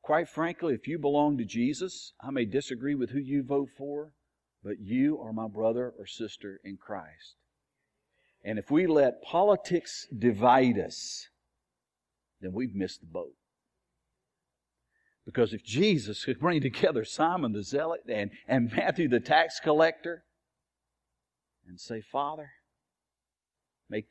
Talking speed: 135 wpm